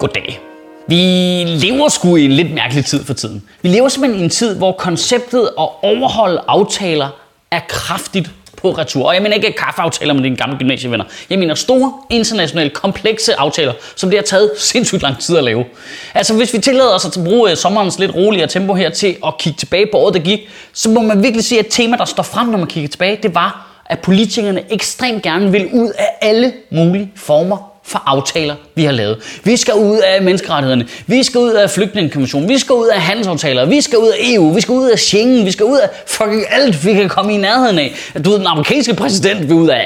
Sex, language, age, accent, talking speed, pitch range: male, Danish, 30-49, native, 220 wpm, 165-235 Hz